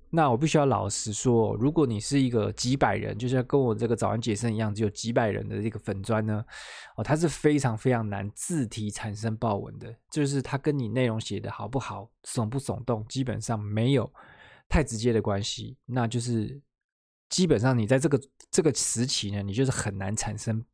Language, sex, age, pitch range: Chinese, male, 20-39, 110-135 Hz